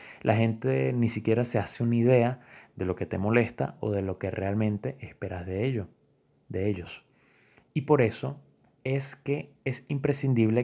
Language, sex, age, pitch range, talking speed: Spanish, male, 20-39, 100-130 Hz, 170 wpm